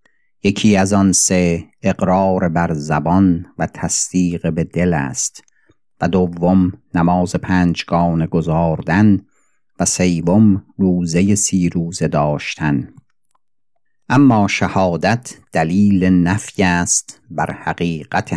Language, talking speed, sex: Persian, 100 wpm, male